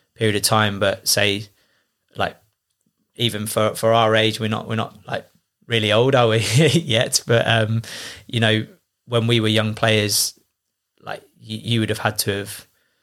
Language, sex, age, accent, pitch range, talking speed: English, male, 20-39, British, 105-115 Hz, 170 wpm